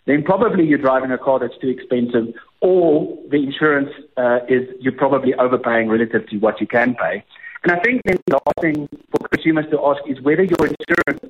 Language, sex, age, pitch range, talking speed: English, male, 50-69, 130-175 Hz, 200 wpm